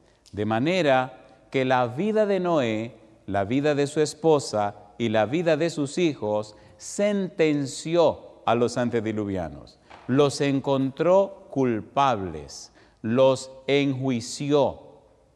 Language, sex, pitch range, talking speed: Spanish, male, 120-160 Hz, 105 wpm